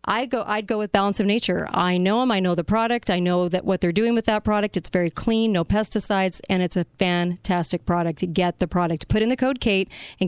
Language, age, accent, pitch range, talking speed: English, 40-59, American, 185-220 Hz, 250 wpm